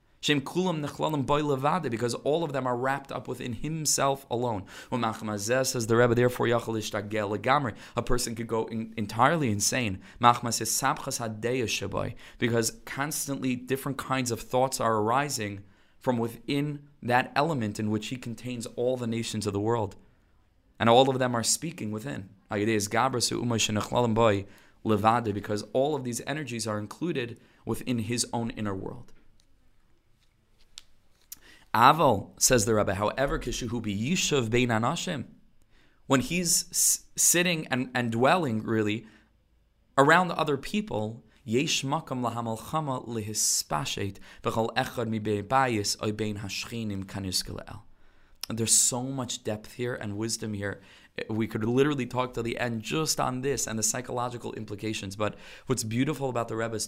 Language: English